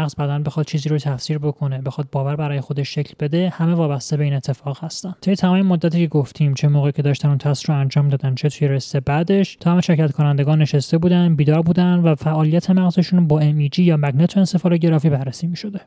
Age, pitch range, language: 20-39, 145-170 Hz, Persian